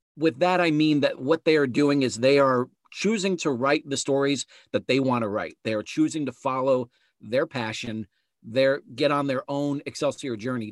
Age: 40-59